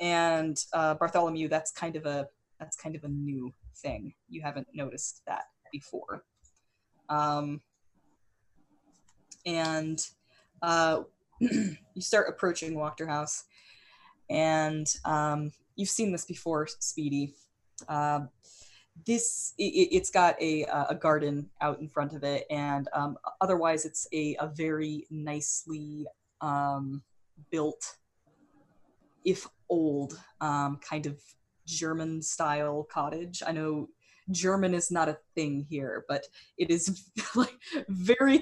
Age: 20-39